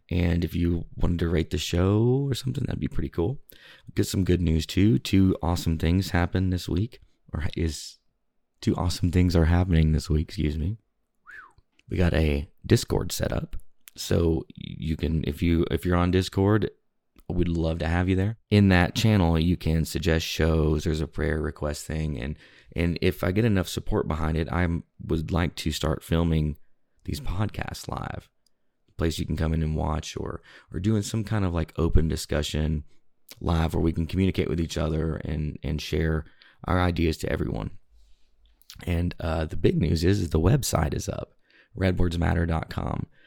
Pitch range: 80-95 Hz